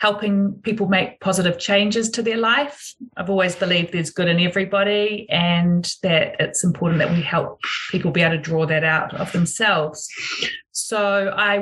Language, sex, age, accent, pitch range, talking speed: English, female, 30-49, Australian, 175-215 Hz, 170 wpm